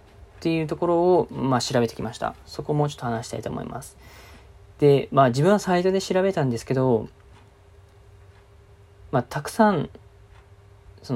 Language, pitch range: Japanese, 100-145 Hz